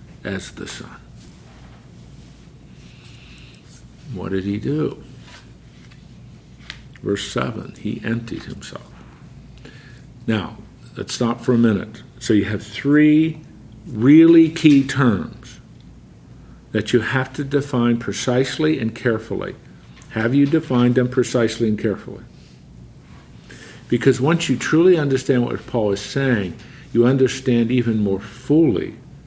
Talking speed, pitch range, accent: 110 wpm, 105-135 Hz, American